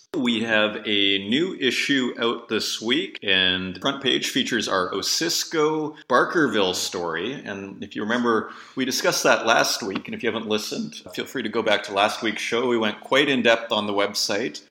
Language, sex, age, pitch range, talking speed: English, male, 30-49, 100-125 Hz, 190 wpm